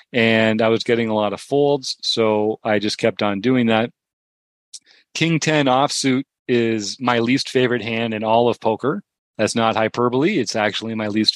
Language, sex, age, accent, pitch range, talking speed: English, male, 40-59, American, 110-125 Hz, 180 wpm